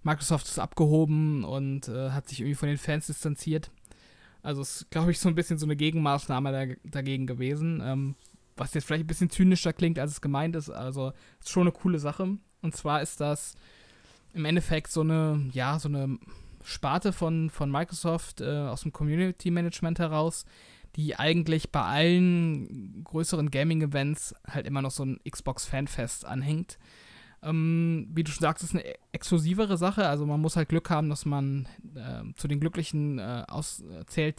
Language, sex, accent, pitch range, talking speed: German, male, German, 140-165 Hz, 175 wpm